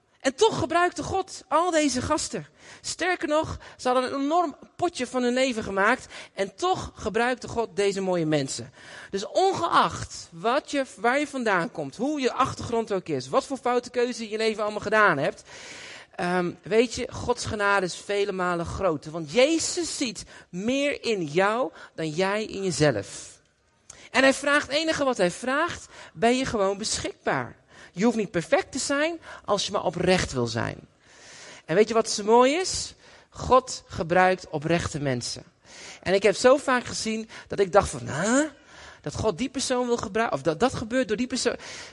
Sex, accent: male, Dutch